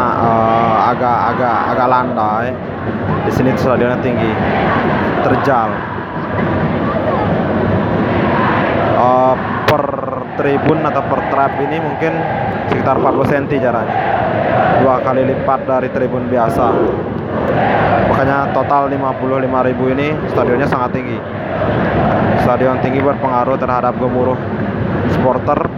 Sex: male